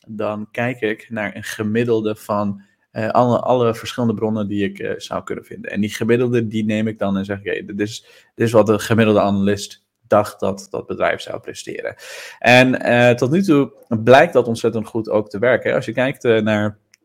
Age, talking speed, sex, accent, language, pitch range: 20-39, 210 wpm, male, Dutch, Dutch, 100-115 Hz